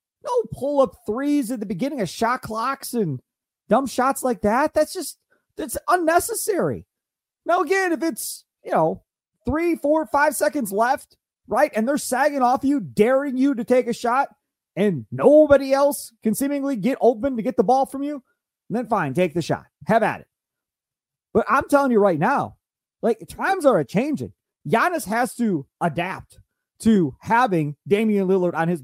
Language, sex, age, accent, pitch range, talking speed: English, male, 30-49, American, 170-275 Hz, 170 wpm